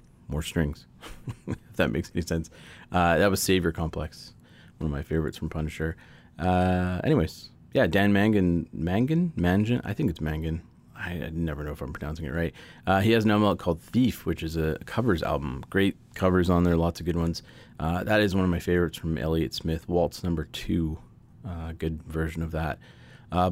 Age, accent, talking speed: 30-49, American, 195 wpm